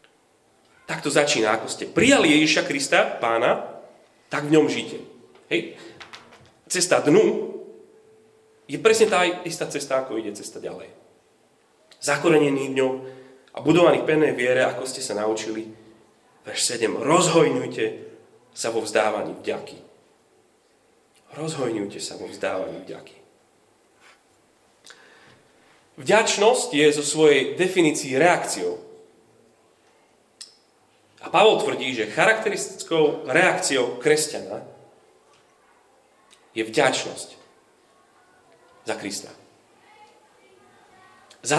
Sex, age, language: male, 30-49, Slovak